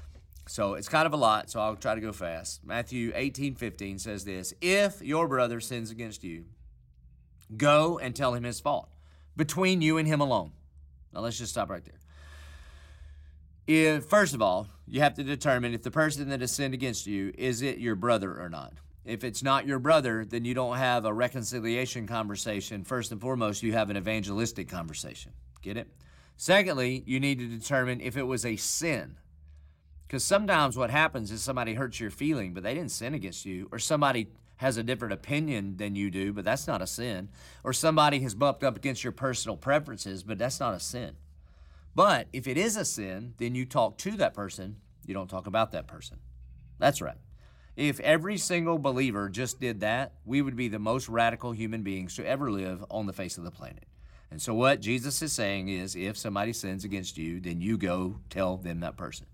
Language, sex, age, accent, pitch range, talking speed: English, male, 40-59, American, 90-130 Hz, 200 wpm